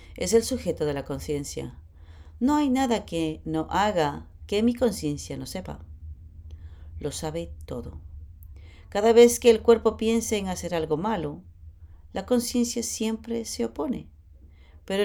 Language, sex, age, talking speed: English, female, 40-59, 145 wpm